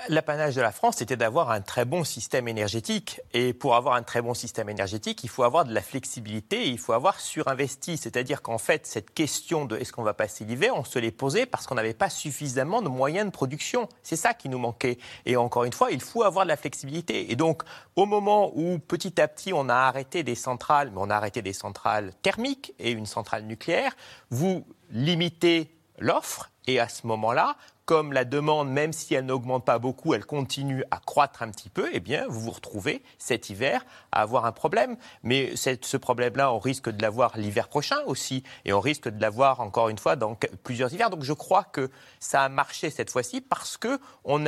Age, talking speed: 30-49, 215 wpm